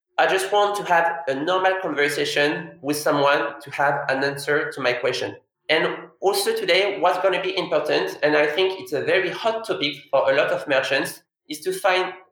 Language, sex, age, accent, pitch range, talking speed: English, male, 20-39, French, 140-185 Hz, 200 wpm